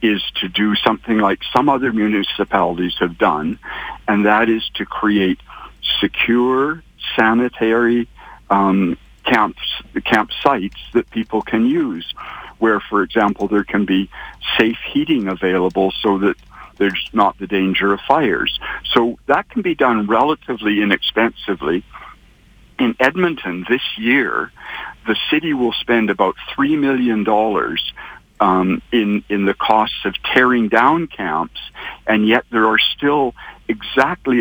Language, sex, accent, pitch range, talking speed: English, male, American, 100-125 Hz, 130 wpm